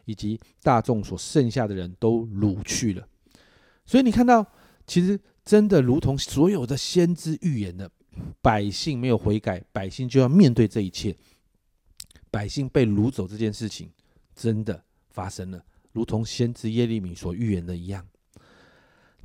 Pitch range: 105-140 Hz